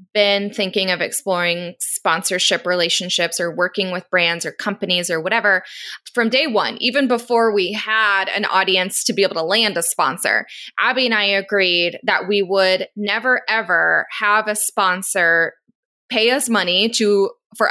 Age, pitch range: 20-39, 190-225 Hz